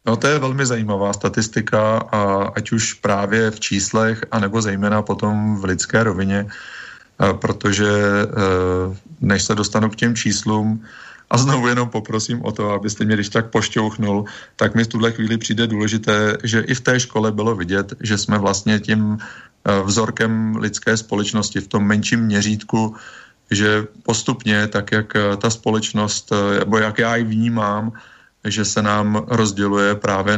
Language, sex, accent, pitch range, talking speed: Czech, male, native, 100-110 Hz, 150 wpm